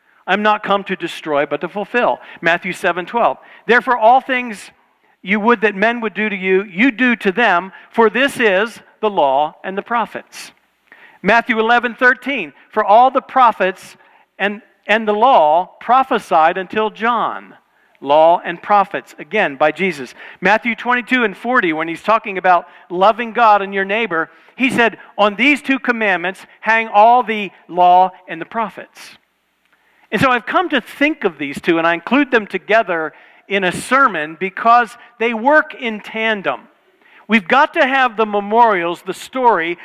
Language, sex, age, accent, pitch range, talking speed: English, male, 50-69, American, 190-245 Hz, 165 wpm